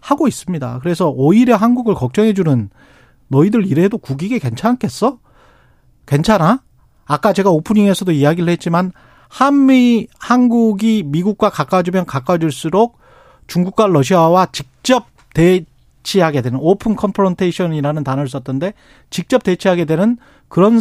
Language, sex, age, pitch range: Korean, male, 40-59, 145-220 Hz